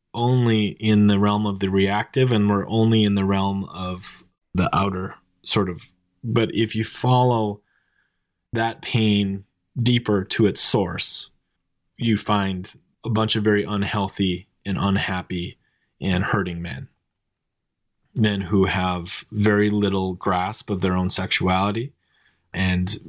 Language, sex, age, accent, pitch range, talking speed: English, male, 20-39, American, 95-110 Hz, 135 wpm